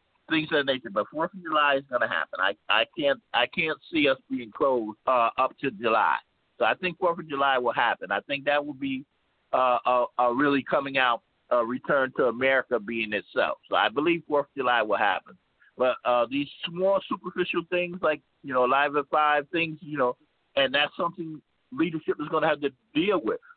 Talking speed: 210 wpm